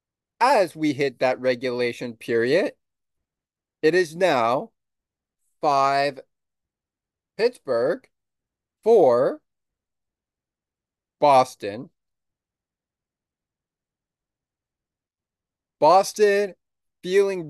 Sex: male